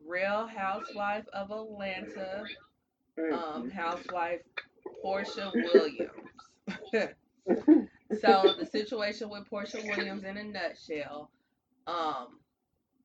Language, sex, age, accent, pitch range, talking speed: English, female, 20-39, American, 160-225 Hz, 85 wpm